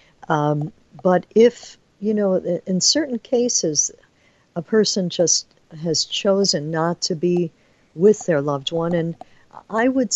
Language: English